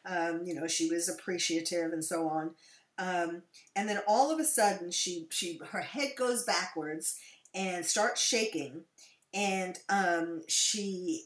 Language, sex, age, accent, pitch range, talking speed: English, female, 40-59, American, 175-225 Hz, 150 wpm